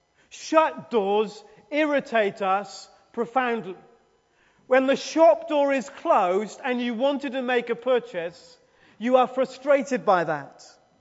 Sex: male